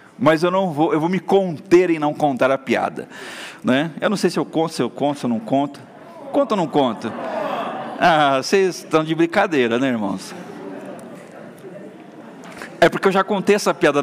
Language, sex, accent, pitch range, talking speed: Portuguese, male, Brazilian, 140-180 Hz, 195 wpm